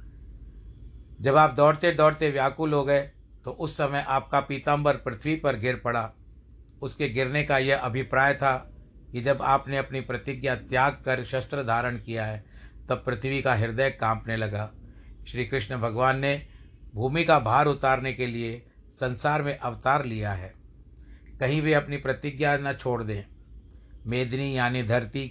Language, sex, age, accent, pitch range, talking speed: Hindi, male, 60-79, native, 105-140 Hz, 150 wpm